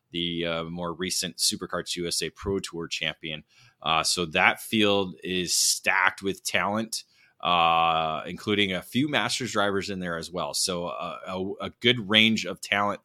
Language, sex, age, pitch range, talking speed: English, male, 20-39, 90-105 Hz, 160 wpm